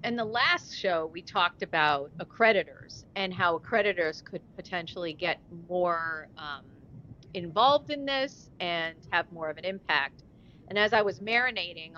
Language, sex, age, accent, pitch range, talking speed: English, female, 40-59, American, 170-220 Hz, 150 wpm